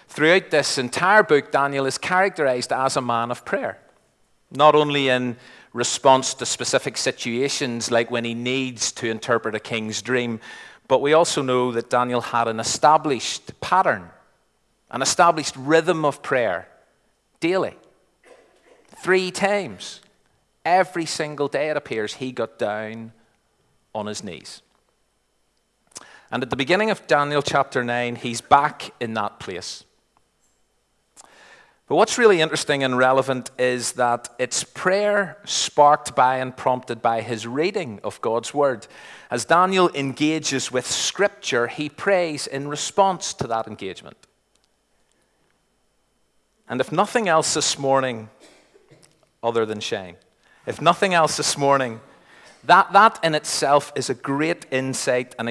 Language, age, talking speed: English, 40-59, 135 wpm